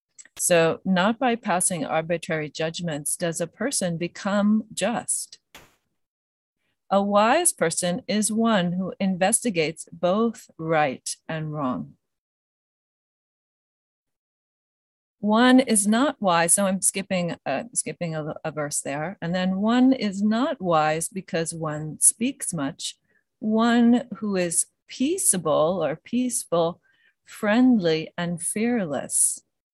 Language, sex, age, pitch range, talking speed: English, female, 40-59, 165-220 Hz, 105 wpm